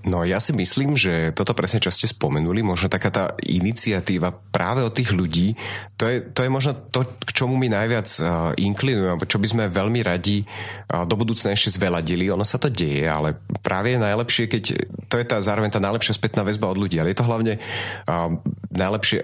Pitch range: 95-110 Hz